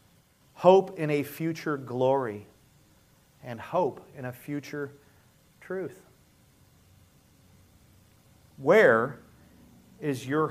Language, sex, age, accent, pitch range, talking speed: English, male, 40-59, American, 110-165 Hz, 80 wpm